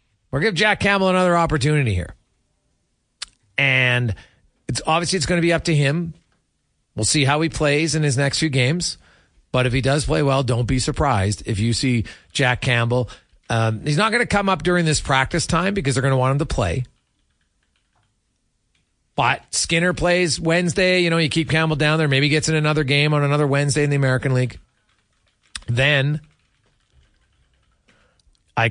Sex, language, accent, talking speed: male, English, American, 180 wpm